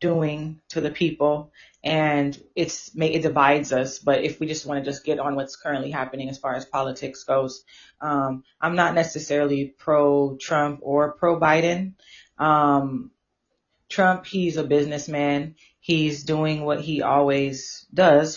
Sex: female